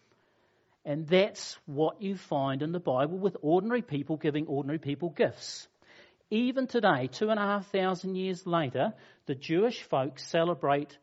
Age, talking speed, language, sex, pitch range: 50-69, 150 wpm, English, male, 145-195 Hz